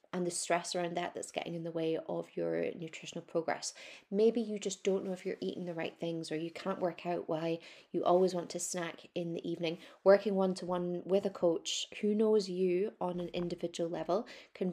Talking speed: 210 wpm